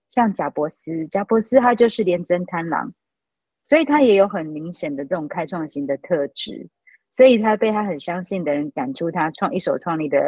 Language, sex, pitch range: Chinese, female, 175-225 Hz